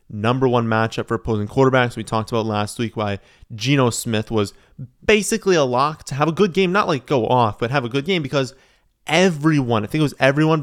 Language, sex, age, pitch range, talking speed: English, male, 30-49, 110-130 Hz, 220 wpm